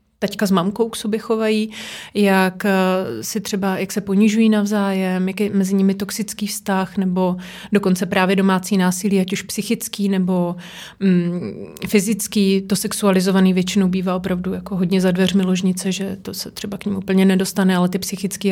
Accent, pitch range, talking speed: native, 190-210 Hz, 170 wpm